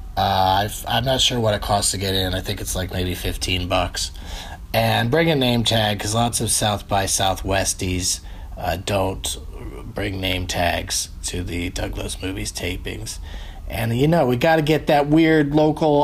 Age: 40-59